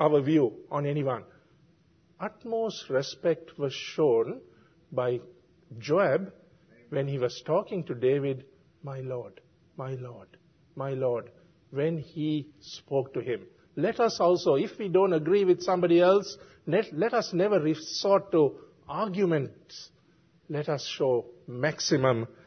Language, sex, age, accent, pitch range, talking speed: English, male, 50-69, Indian, 145-195 Hz, 130 wpm